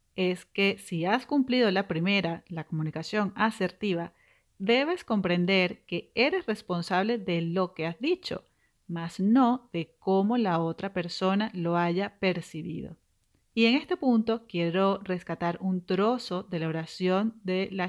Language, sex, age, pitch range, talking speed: Spanish, female, 40-59, 170-215 Hz, 145 wpm